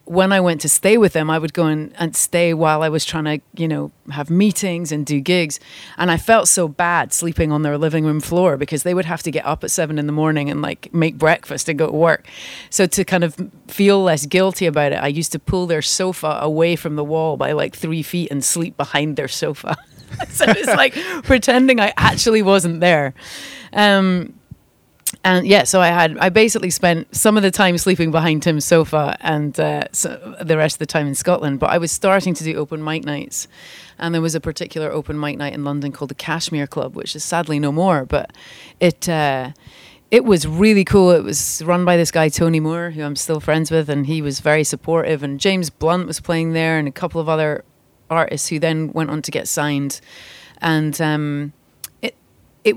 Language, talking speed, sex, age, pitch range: English, 220 wpm, female, 30-49, 150-175 Hz